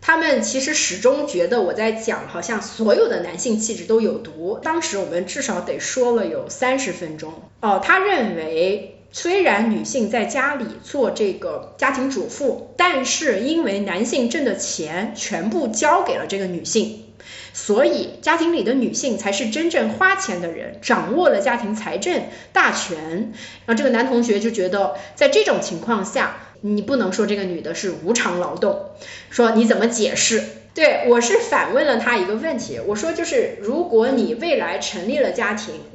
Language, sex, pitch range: Chinese, female, 205-320 Hz